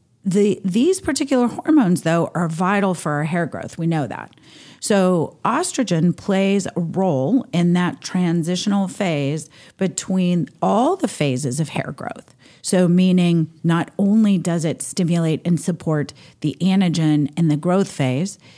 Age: 40-59